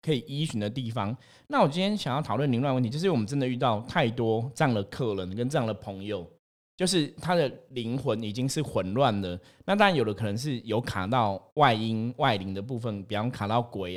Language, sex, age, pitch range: Chinese, male, 20-39, 105-135 Hz